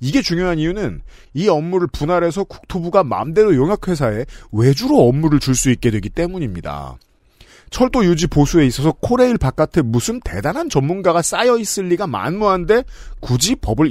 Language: Korean